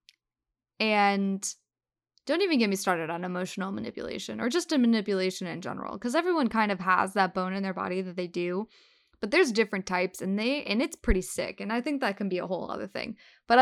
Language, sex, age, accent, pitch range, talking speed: English, female, 10-29, American, 195-245 Hz, 215 wpm